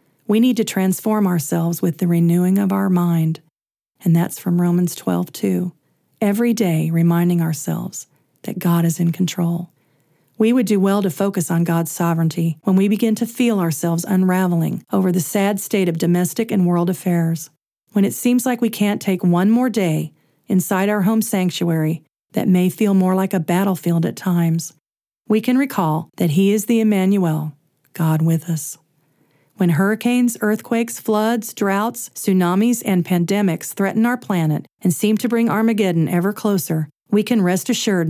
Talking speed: 170 wpm